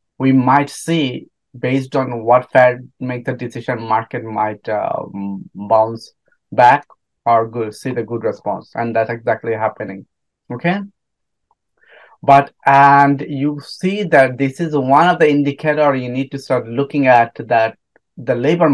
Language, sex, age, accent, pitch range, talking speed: English, male, 30-49, Indian, 115-140 Hz, 145 wpm